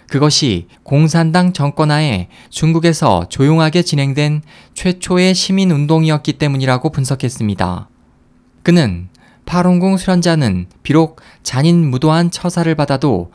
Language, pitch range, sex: Korean, 120-165 Hz, male